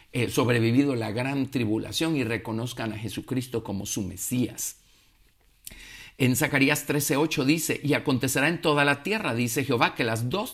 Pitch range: 120-170 Hz